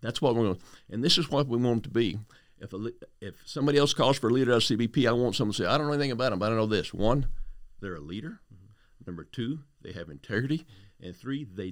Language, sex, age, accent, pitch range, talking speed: English, male, 50-69, American, 105-140 Hz, 265 wpm